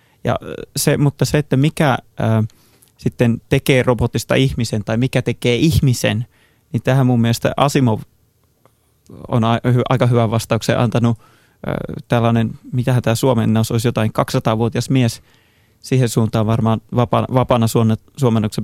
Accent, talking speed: native, 135 wpm